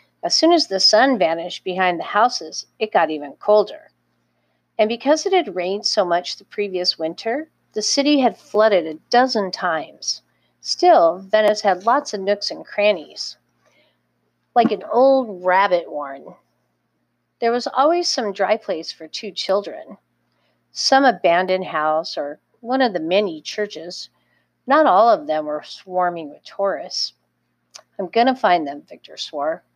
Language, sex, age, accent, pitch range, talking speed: English, female, 50-69, American, 180-255 Hz, 155 wpm